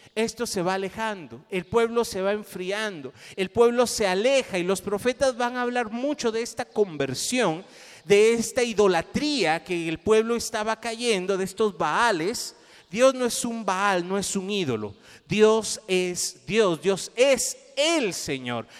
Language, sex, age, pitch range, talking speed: Spanish, male, 40-59, 175-235 Hz, 160 wpm